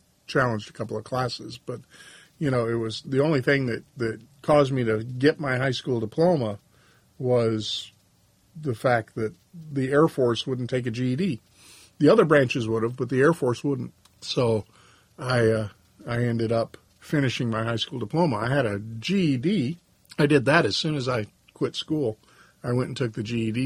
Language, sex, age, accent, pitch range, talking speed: English, male, 50-69, American, 115-140 Hz, 190 wpm